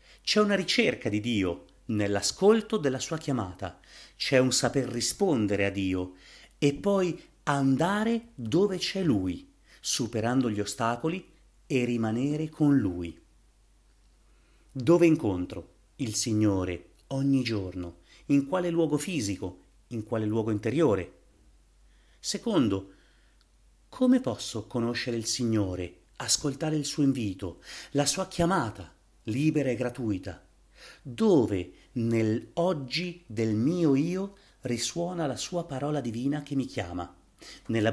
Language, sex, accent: Italian, male, native